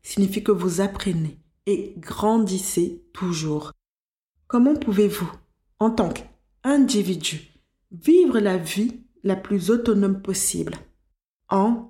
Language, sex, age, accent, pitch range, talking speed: French, female, 20-39, French, 170-215 Hz, 100 wpm